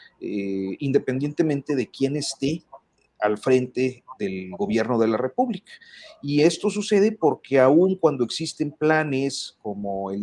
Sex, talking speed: male, 130 wpm